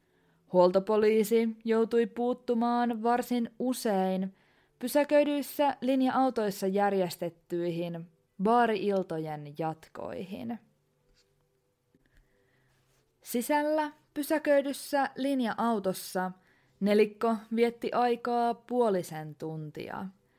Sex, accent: female, native